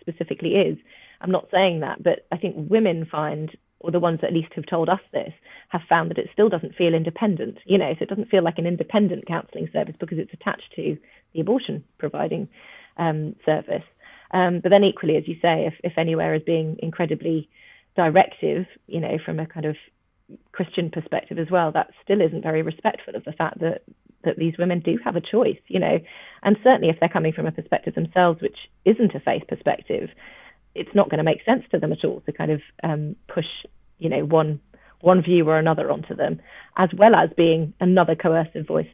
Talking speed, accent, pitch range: 210 wpm, British, 160-195 Hz